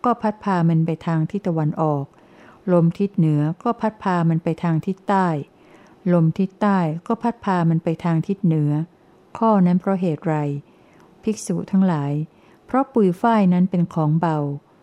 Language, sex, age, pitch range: Thai, female, 60-79, 160-200 Hz